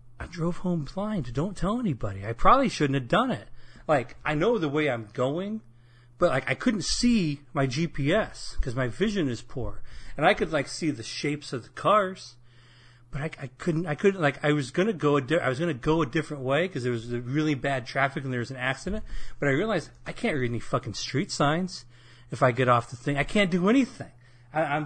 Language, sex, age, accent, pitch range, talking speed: English, male, 40-59, American, 120-155 Hz, 230 wpm